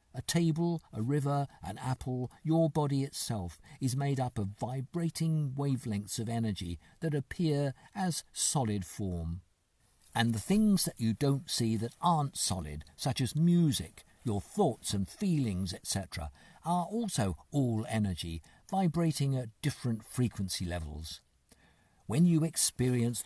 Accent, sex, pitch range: British, male, 95-145 Hz